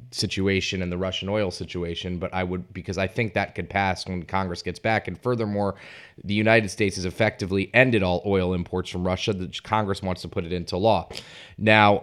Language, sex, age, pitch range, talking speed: English, male, 30-49, 90-110 Hz, 205 wpm